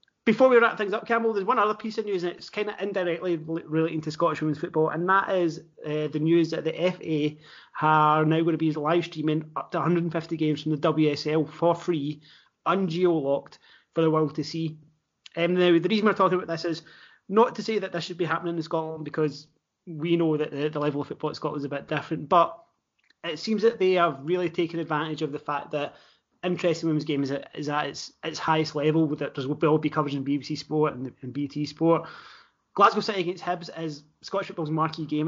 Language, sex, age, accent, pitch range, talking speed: English, male, 30-49, British, 150-175 Hz, 225 wpm